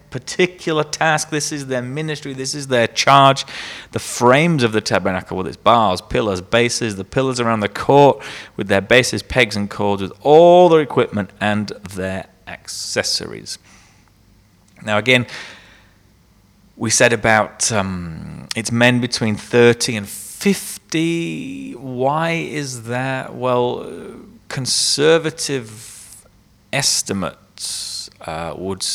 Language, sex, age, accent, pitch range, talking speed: English, male, 30-49, British, 100-130 Hz, 120 wpm